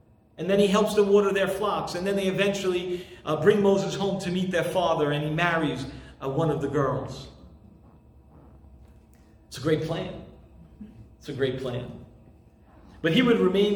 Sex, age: male, 40-59